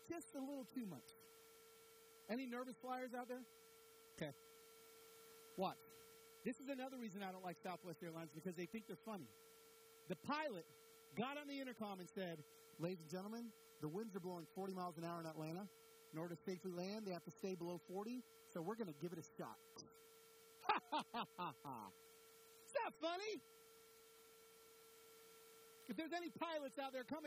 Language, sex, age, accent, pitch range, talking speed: English, male, 40-59, American, 225-355 Hz, 175 wpm